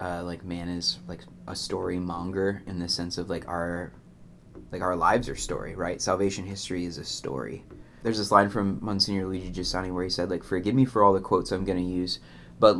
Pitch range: 90-105 Hz